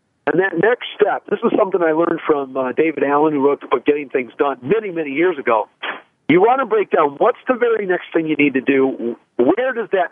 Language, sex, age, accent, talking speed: English, male, 50-69, American, 245 wpm